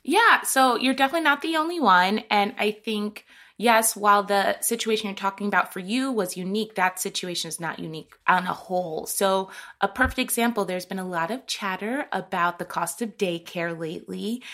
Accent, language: American, English